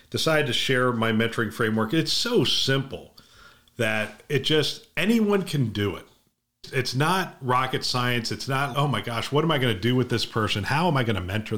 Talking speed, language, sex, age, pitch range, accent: 205 wpm, English, male, 40-59, 110-150 Hz, American